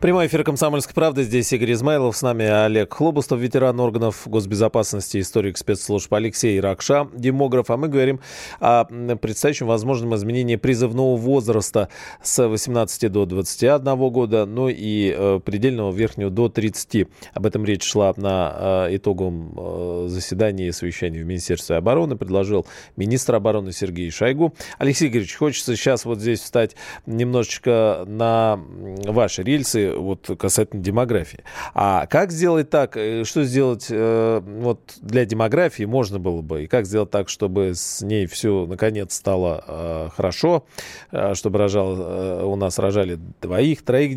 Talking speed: 135 wpm